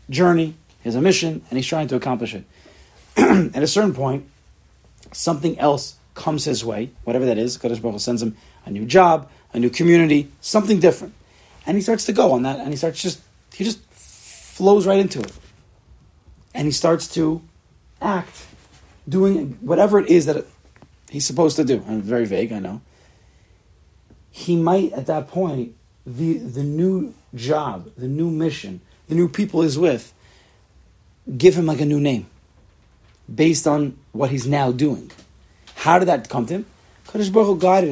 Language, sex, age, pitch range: English, male, 40-59, 120-165 Hz